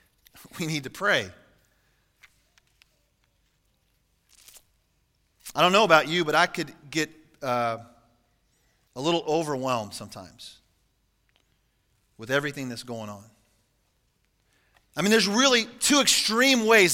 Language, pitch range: English, 135-190 Hz